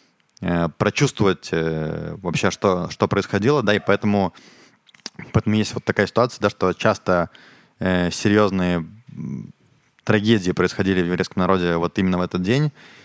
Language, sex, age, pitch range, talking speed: Russian, male, 20-39, 90-110 Hz, 130 wpm